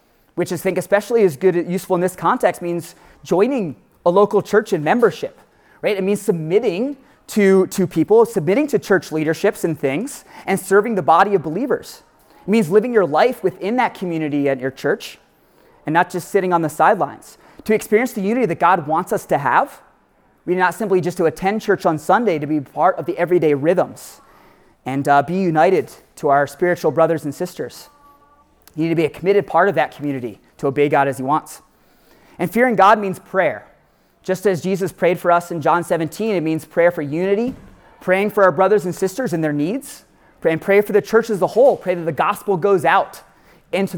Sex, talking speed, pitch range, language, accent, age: male, 205 wpm, 165-205 Hz, English, American, 30-49